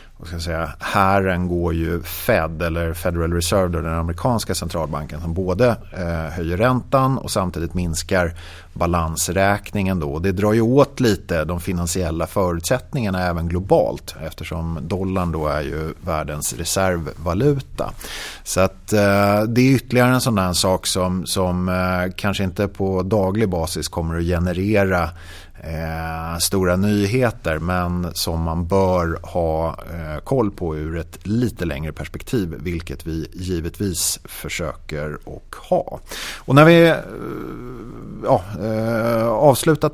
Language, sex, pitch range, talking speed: Swedish, male, 85-115 Hz, 135 wpm